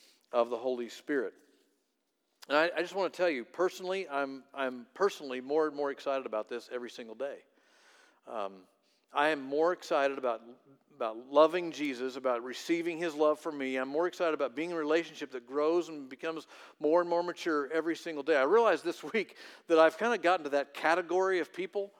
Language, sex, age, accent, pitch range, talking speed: English, male, 50-69, American, 140-185 Hz, 200 wpm